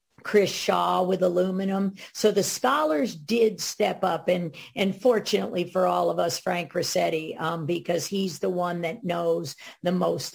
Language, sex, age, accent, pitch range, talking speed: English, female, 50-69, American, 175-205 Hz, 160 wpm